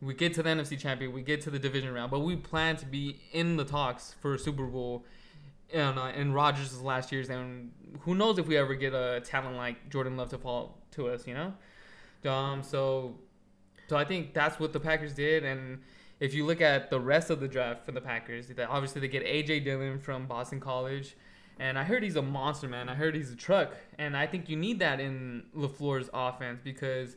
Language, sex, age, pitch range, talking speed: English, male, 20-39, 130-150 Hz, 225 wpm